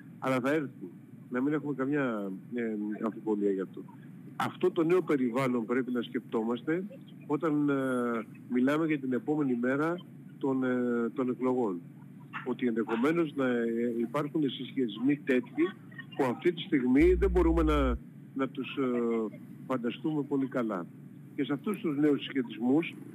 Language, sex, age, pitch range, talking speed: Greek, male, 50-69, 125-150 Hz, 140 wpm